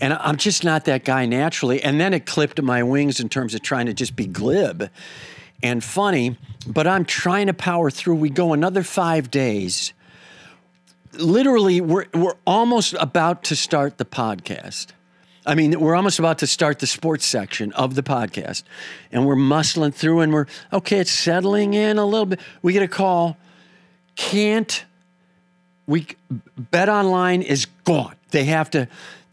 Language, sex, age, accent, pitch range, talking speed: English, male, 50-69, American, 135-180 Hz, 170 wpm